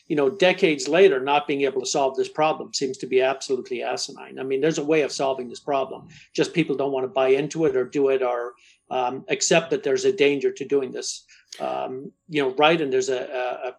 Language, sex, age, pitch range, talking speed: English, male, 50-69, 140-165 Hz, 225 wpm